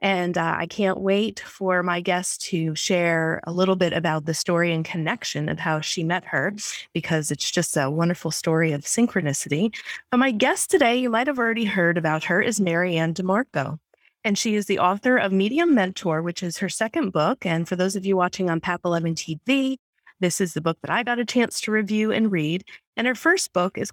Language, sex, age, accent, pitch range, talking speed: English, female, 30-49, American, 170-220 Hz, 210 wpm